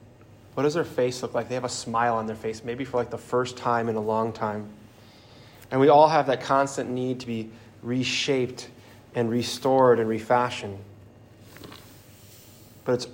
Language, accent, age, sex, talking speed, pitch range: English, American, 20-39, male, 180 wpm, 115-130 Hz